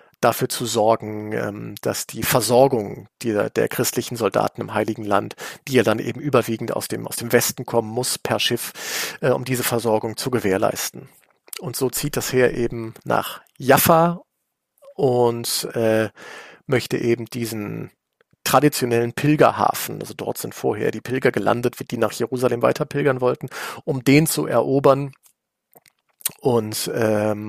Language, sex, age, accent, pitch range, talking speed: German, male, 40-59, German, 115-140 Hz, 140 wpm